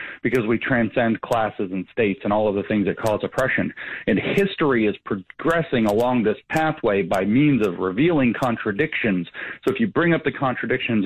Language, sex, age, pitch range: English, male, 40-59, 110-140 Hz